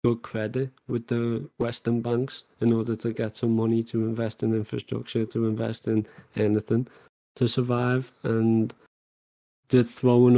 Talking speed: 145 wpm